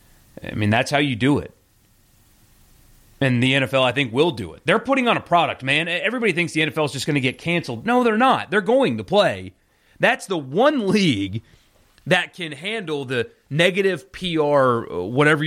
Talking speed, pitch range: 190 wpm, 115-145 Hz